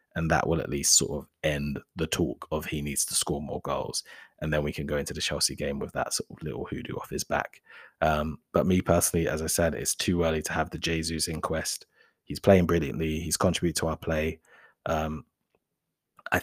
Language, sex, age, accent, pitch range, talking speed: English, male, 20-39, British, 80-90 Hz, 225 wpm